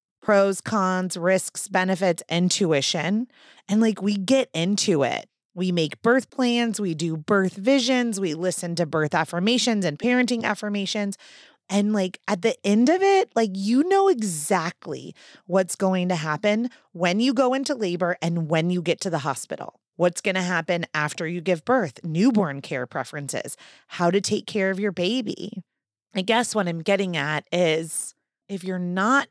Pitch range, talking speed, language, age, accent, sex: 155-210 Hz, 165 wpm, English, 30-49, American, female